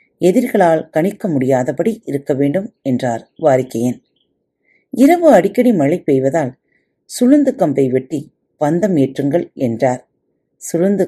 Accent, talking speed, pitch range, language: native, 85 wpm, 135-205 Hz, Tamil